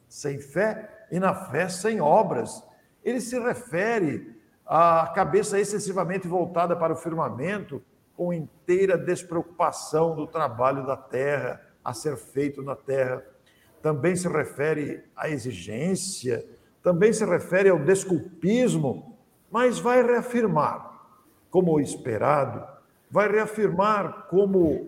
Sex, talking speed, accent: male, 115 wpm, Brazilian